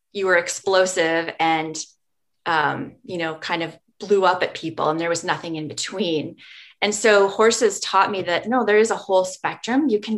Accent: American